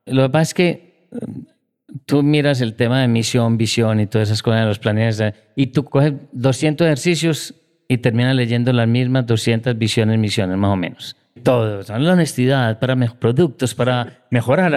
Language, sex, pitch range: Spanish, male, 120-140 Hz